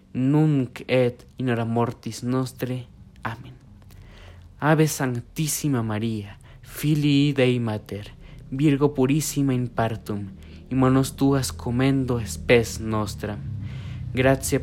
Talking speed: 100 wpm